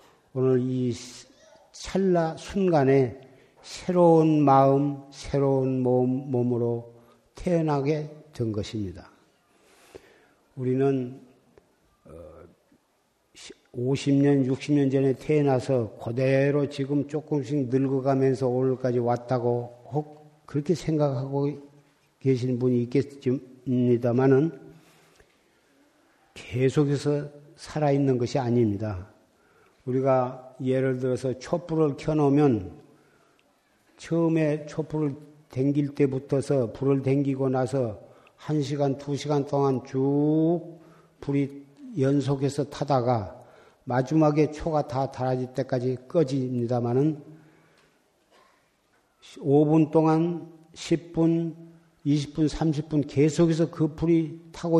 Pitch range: 130-155 Hz